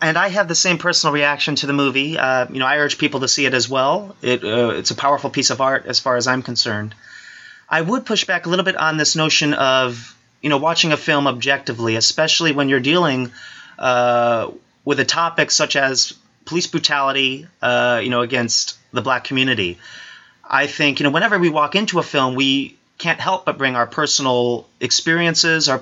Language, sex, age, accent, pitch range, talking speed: English, male, 30-49, American, 130-165 Hz, 205 wpm